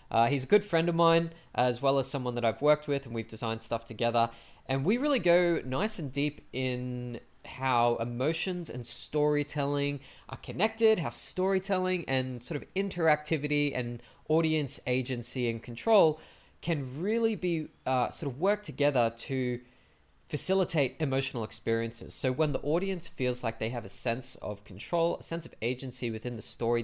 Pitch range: 115-155 Hz